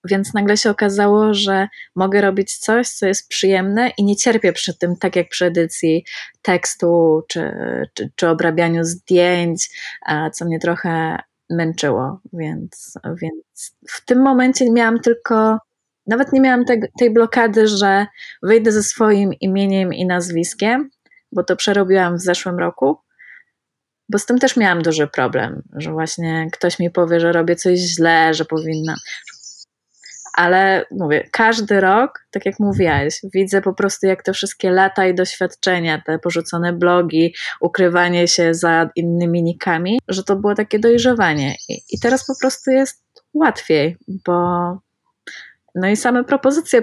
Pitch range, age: 170-210 Hz, 20-39